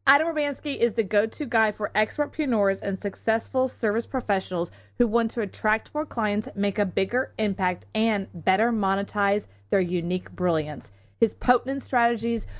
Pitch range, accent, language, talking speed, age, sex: 175-230 Hz, American, English, 150 wpm, 30-49, female